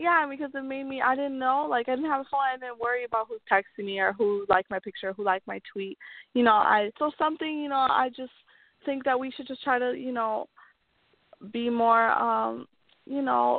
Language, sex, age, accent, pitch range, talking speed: English, female, 20-39, American, 210-270 Hz, 235 wpm